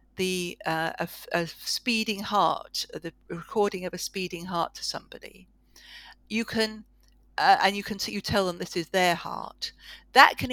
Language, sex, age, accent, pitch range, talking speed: English, female, 50-69, British, 170-225 Hz, 170 wpm